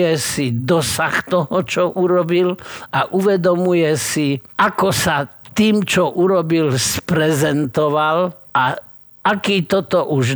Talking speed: 105 wpm